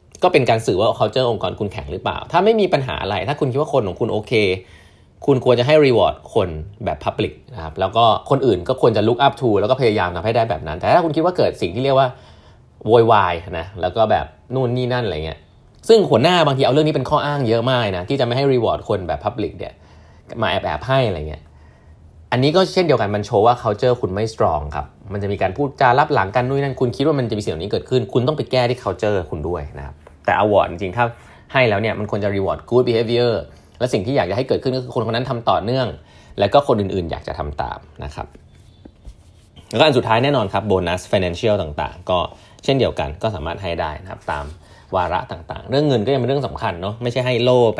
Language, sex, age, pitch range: Thai, male, 20-39, 90-125 Hz